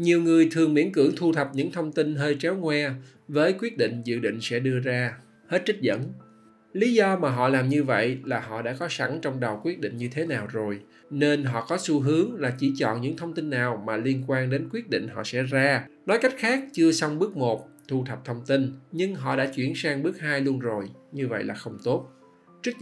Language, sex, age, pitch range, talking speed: Vietnamese, male, 20-39, 125-160 Hz, 240 wpm